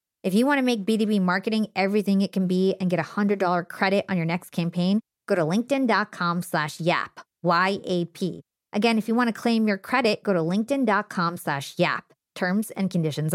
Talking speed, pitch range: 190 wpm, 180-245 Hz